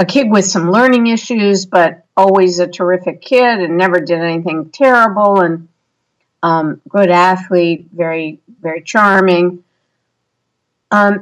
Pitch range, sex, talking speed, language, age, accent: 165-195 Hz, female, 130 wpm, English, 50-69, American